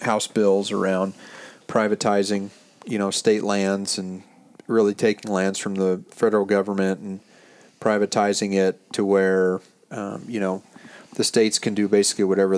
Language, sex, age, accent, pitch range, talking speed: English, male, 30-49, American, 95-105 Hz, 145 wpm